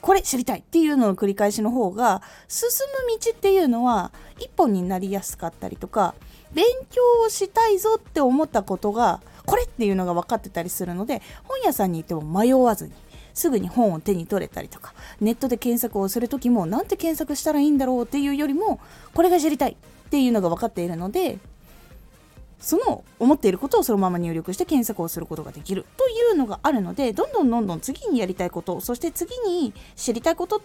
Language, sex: Japanese, female